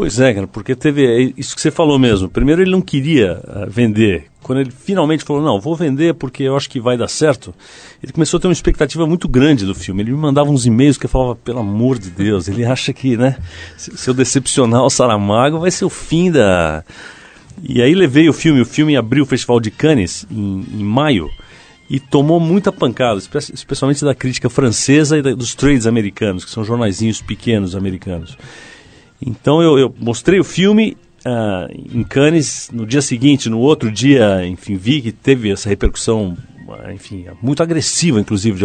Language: Portuguese